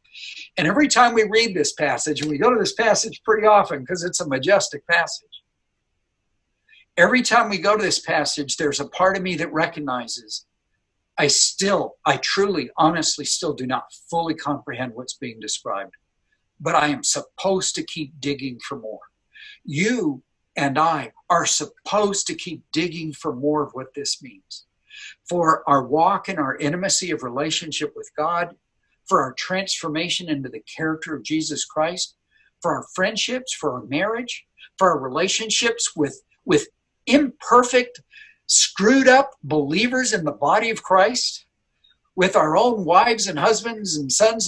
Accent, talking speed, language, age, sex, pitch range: American, 160 wpm, English, 60-79, male, 150-225 Hz